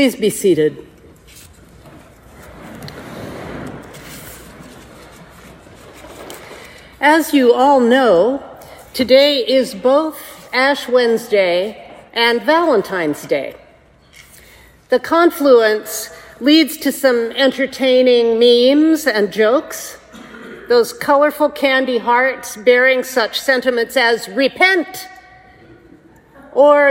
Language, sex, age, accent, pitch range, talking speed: English, female, 50-69, American, 230-305 Hz, 75 wpm